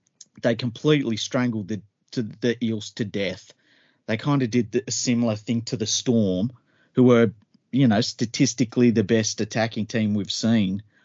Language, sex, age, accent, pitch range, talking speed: English, male, 30-49, Australian, 100-120 Hz, 170 wpm